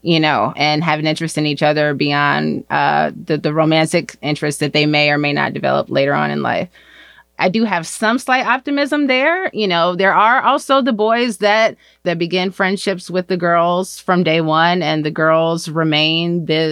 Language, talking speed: English, 195 wpm